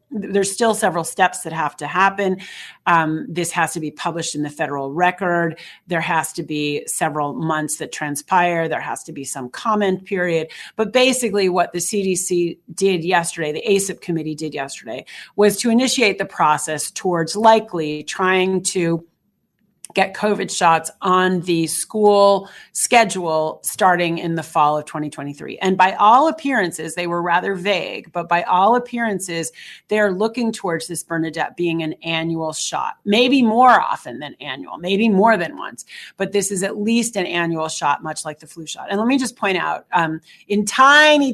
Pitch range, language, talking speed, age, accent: 165-205 Hz, English, 175 wpm, 40-59, American